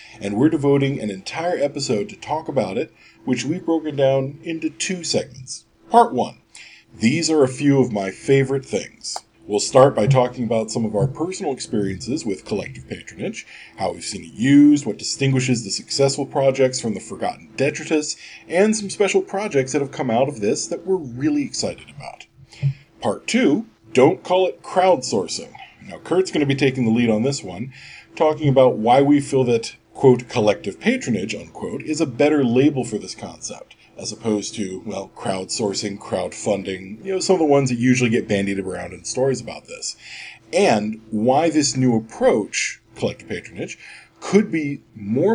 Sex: male